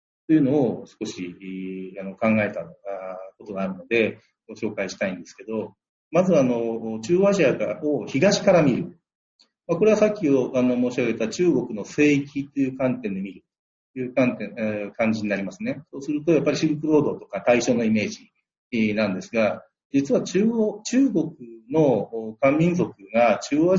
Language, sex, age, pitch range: Japanese, male, 40-59, 110-175 Hz